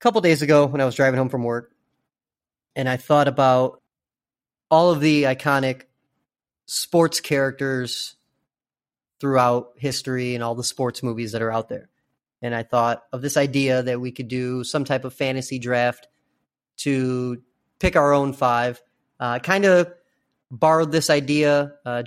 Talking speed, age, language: 160 wpm, 30-49, English